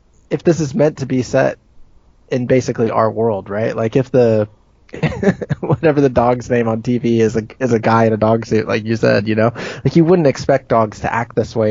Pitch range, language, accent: 110-135 Hz, English, American